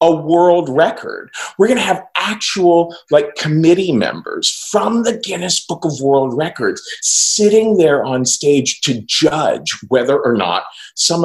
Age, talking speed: 40-59, 145 wpm